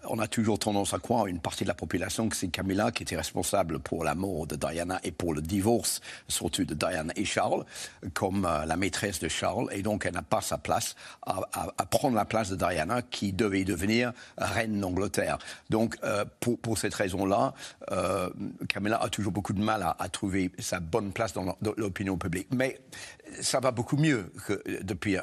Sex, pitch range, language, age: male, 95-110 Hz, French, 50-69